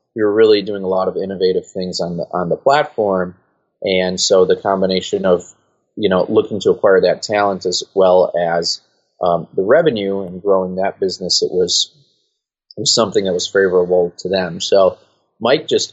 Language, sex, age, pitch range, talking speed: English, male, 30-49, 90-125 Hz, 185 wpm